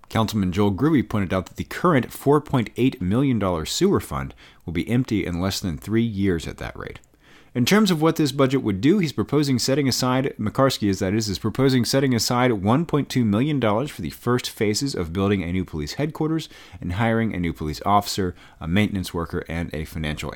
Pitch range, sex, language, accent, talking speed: 90-130 Hz, male, English, American, 205 wpm